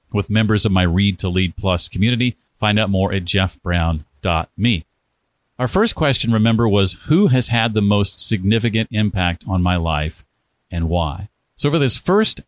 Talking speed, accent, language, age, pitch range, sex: 170 wpm, American, English, 40-59, 95-125 Hz, male